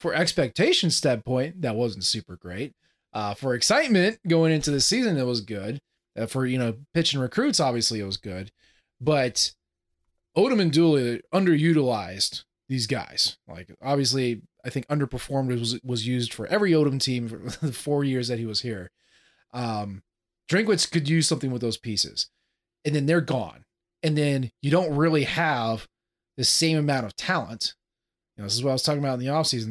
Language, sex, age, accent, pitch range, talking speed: English, male, 30-49, American, 120-165 Hz, 175 wpm